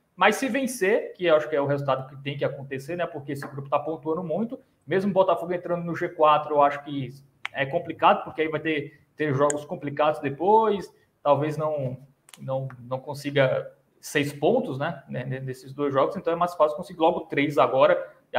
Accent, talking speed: Brazilian, 195 wpm